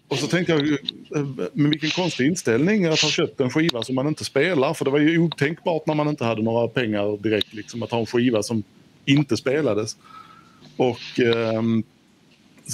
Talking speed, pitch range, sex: 185 wpm, 115-150 Hz, male